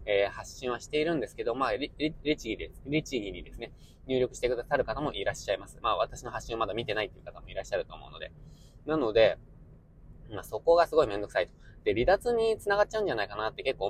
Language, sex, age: Japanese, male, 20-39